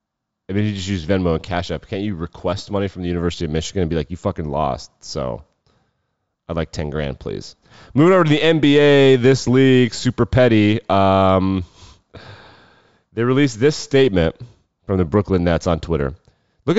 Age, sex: 30-49, male